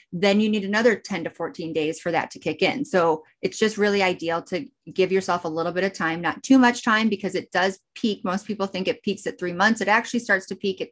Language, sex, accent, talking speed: English, female, American, 265 wpm